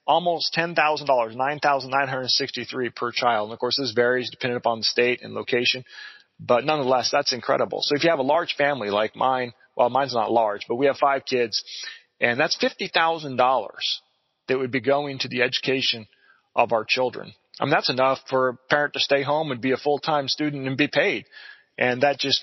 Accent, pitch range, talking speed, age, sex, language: American, 120-140 Hz, 195 wpm, 30-49, male, English